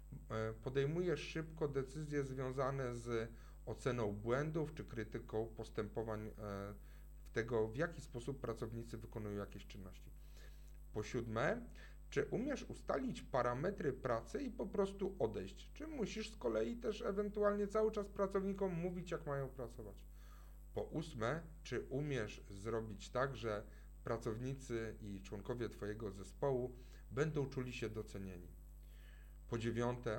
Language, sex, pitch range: Polish, male, 105-140 Hz